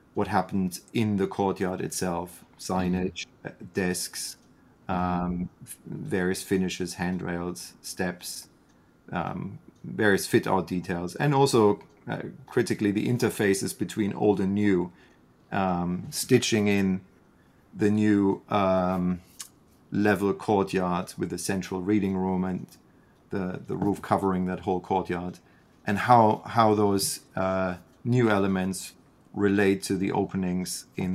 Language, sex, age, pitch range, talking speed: English, male, 30-49, 90-100 Hz, 120 wpm